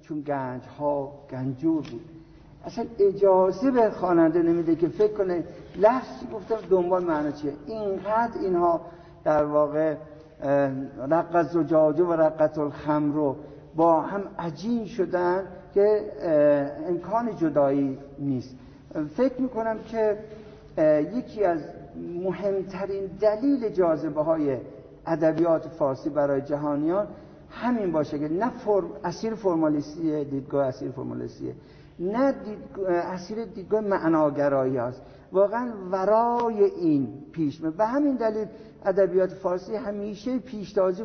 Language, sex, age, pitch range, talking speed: English, male, 60-79, 155-210 Hz, 105 wpm